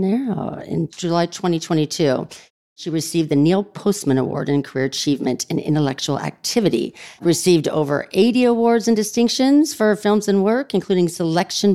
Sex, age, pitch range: female, 40-59, 150-195 Hz